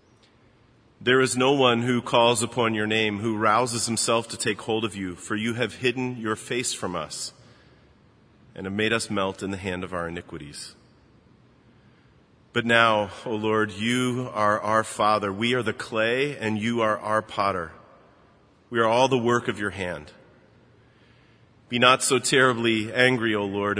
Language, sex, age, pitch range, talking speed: English, male, 40-59, 105-115 Hz, 170 wpm